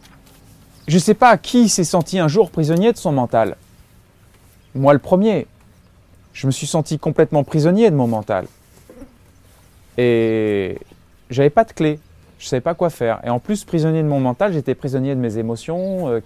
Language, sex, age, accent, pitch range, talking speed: French, male, 30-49, French, 105-150 Hz, 180 wpm